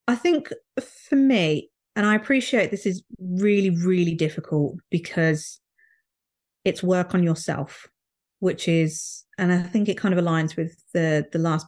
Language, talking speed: English, 155 wpm